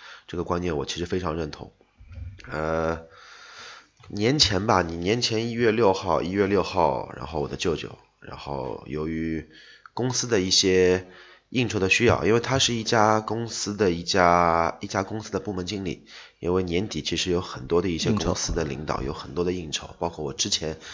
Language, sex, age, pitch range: Chinese, male, 20-39, 80-100 Hz